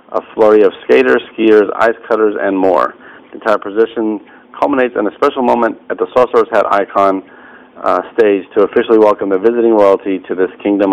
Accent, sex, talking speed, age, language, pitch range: American, male, 180 wpm, 40-59, English, 100-120 Hz